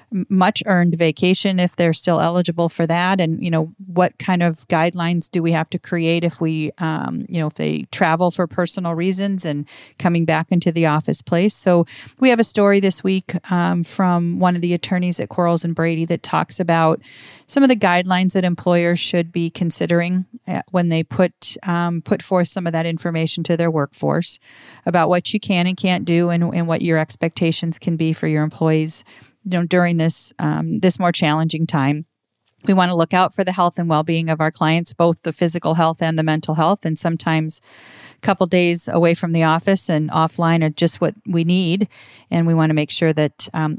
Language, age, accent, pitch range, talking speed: English, 40-59, American, 160-180 Hz, 210 wpm